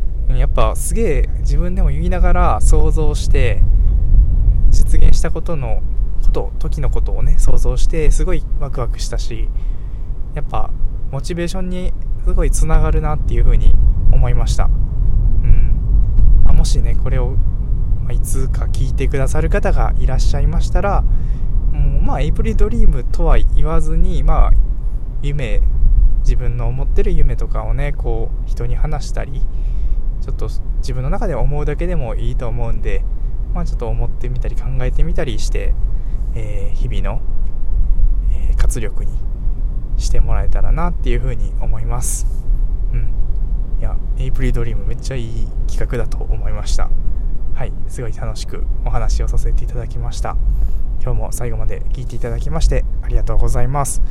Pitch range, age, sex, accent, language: 100-125 Hz, 20-39, male, native, Japanese